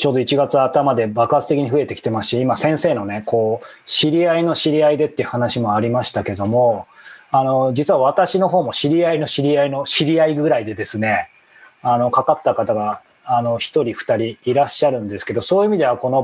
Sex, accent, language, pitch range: male, native, Japanese, 120-165 Hz